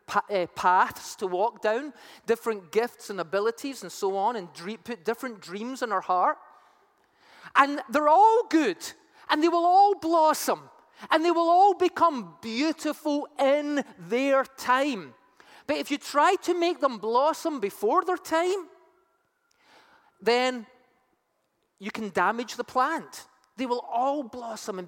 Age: 30-49